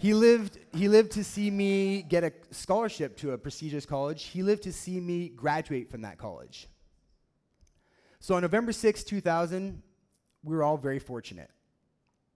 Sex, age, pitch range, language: male, 30-49, 115-170 Hz, English